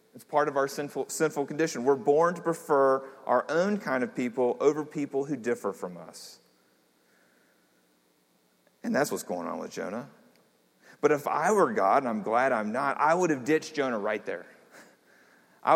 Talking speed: 180 wpm